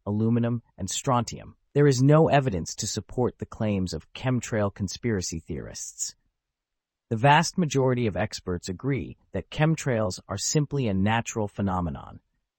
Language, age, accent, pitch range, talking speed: English, 40-59, American, 95-130 Hz, 135 wpm